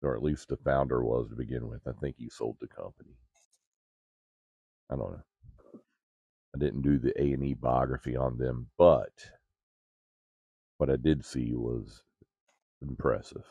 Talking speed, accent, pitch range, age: 145 wpm, American, 65-70 Hz, 40-59